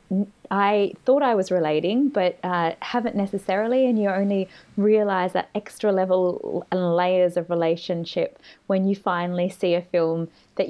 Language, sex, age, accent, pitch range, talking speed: English, female, 20-39, Australian, 165-190 Hz, 150 wpm